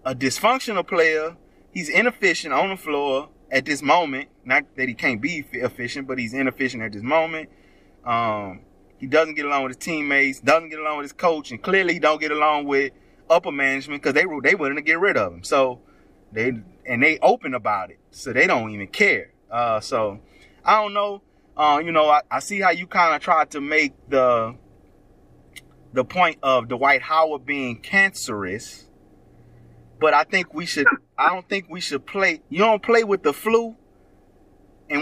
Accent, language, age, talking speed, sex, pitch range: American, English, 20-39, 190 wpm, male, 135-195 Hz